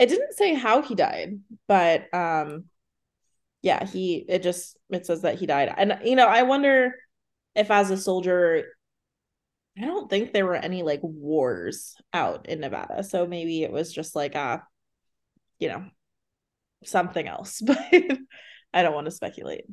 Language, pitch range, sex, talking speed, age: English, 175-225 Hz, female, 165 wpm, 20-39